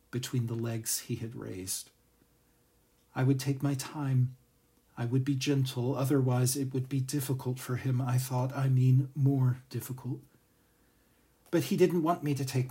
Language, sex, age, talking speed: English, male, 40-59, 165 wpm